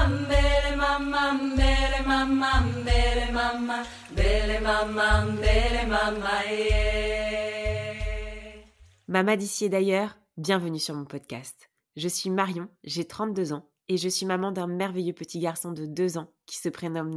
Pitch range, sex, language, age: 175-205 Hz, female, French, 30-49